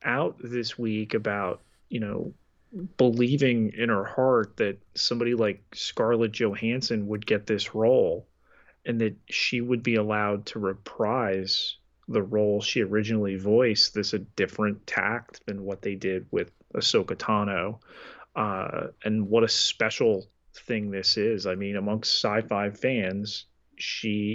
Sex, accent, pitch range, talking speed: male, American, 100-120 Hz, 140 wpm